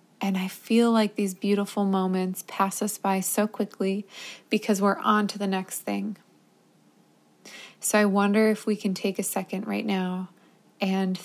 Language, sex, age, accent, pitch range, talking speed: English, female, 20-39, American, 190-215 Hz, 165 wpm